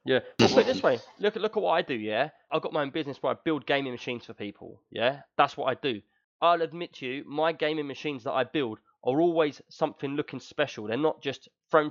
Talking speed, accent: 230 wpm, British